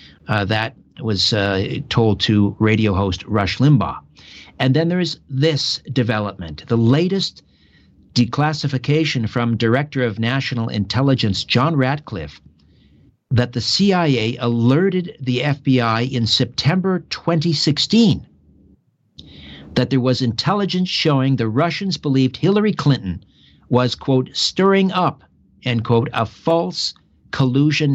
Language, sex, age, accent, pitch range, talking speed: English, male, 50-69, American, 110-150 Hz, 115 wpm